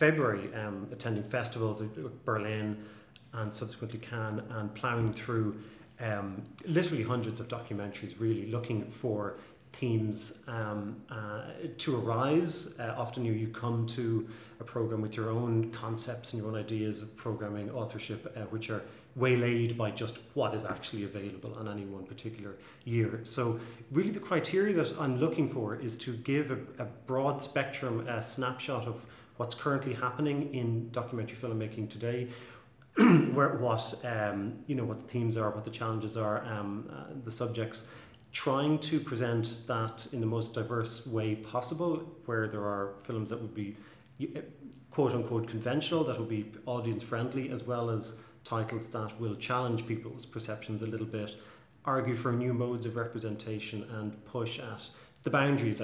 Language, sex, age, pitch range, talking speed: English, male, 30-49, 110-125 Hz, 155 wpm